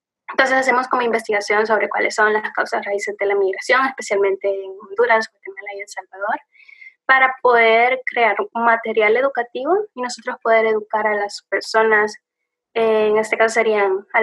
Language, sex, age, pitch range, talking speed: Spanish, female, 10-29, 205-255 Hz, 165 wpm